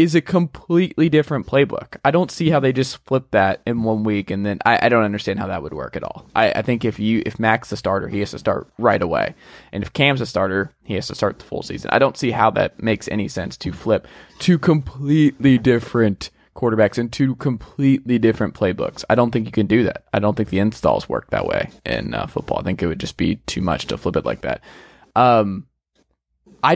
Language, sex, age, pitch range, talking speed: English, male, 20-39, 110-155 Hz, 240 wpm